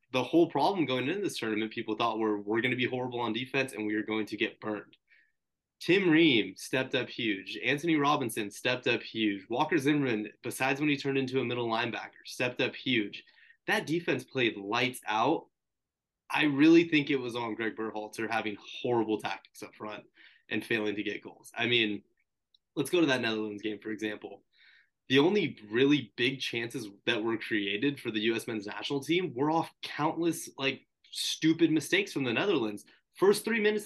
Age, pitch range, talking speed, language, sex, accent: 20-39, 110-150 Hz, 190 wpm, English, male, American